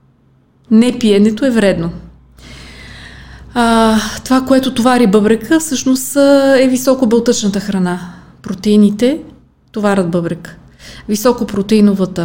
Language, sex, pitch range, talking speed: Bulgarian, female, 200-240 Hz, 85 wpm